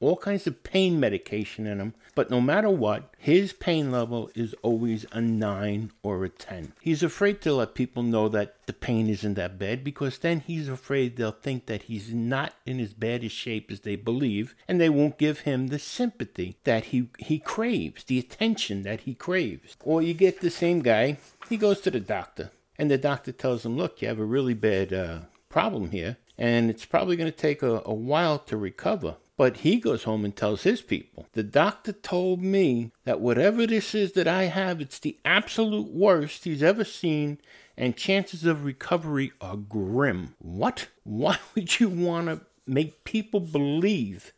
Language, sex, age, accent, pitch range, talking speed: English, male, 60-79, American, 115-180 Hz, 190 wpm